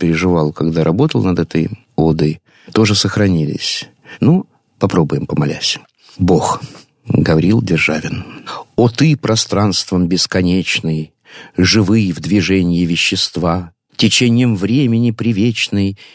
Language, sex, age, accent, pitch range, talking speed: Russian, male, 50-69, native, 90-140 Hz, 95 wpm